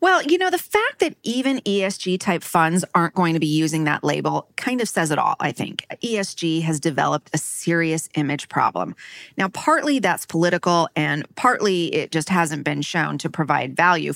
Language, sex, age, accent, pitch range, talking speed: English, female, 30-49, American, 155-185 Hz, 185 wpm